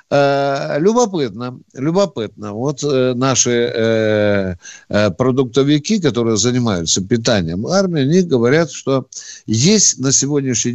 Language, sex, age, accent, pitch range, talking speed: Russian, male, 60-79, native, 110-155 Hz, 95 wpm